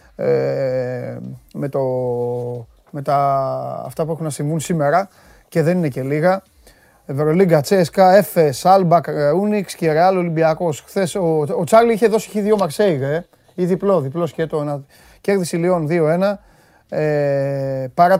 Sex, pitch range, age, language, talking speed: male, 140-170 Hz, 30-49, Greek, 135 wpm